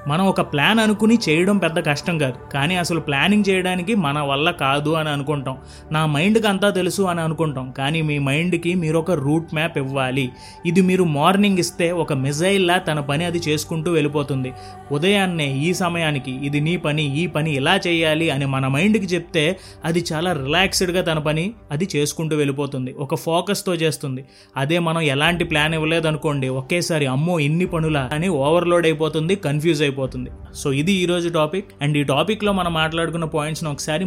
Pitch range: 145-175 Hz